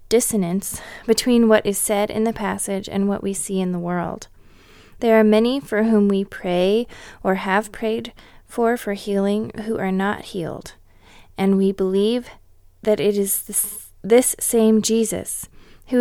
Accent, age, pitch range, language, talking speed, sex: American, 20-39, 190-220 Hz, English, 160 wpm, female